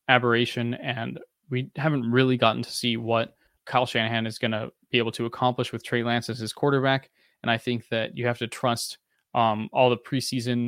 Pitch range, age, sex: 115-130 Hz, 20-39, male